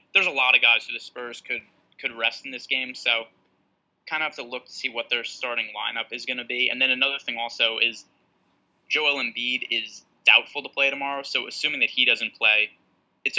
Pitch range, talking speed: 120-140 Hz, 225 wpm